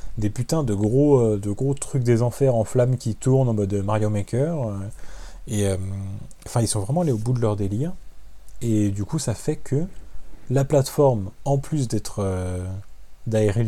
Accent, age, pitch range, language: French, 30-49, 100-130 Hz, French